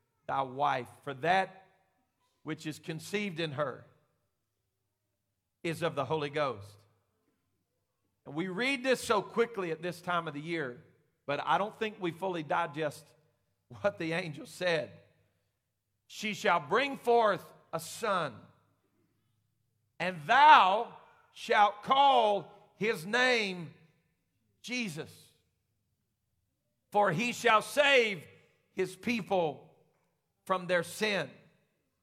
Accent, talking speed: American, 110 wpm